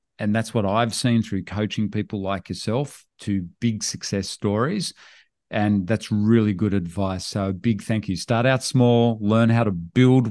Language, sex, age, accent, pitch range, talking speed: English, male, 40-59, Australian, 105-125 Hz, 175 wpm